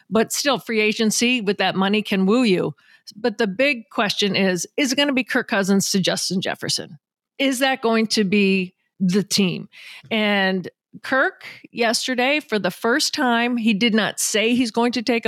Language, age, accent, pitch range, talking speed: English, 40-59, American, 190-230 Hz, 185 wpm